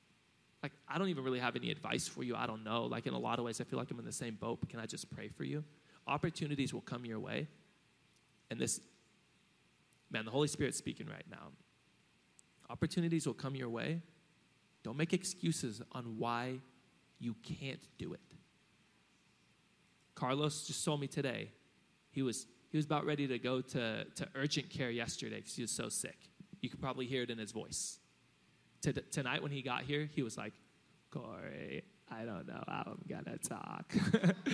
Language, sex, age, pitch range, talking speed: English, male, 20-39, 120-150 Hz, 190 wpm